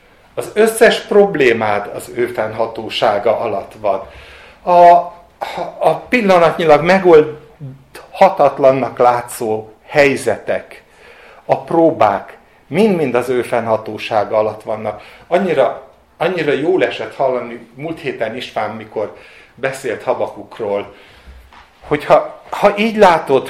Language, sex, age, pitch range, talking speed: Hungarian, male, 60-79, 120-175 Hz, 95 wpm